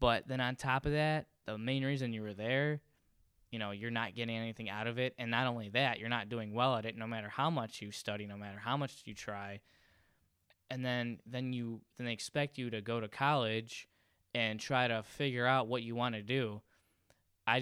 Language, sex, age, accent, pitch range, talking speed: English, male, 10-29, American, 105-130 Hz, 225 wpm